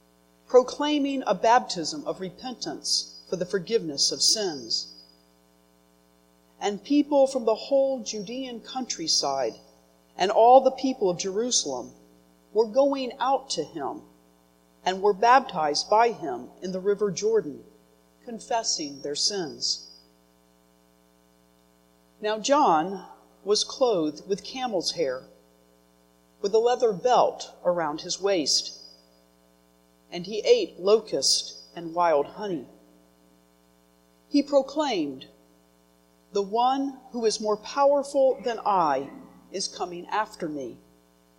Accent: American